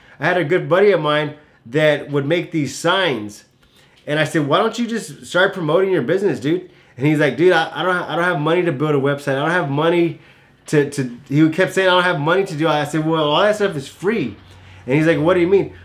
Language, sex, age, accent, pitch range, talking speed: English, male, 20-39, American, 145-180 Hz, 265 wpm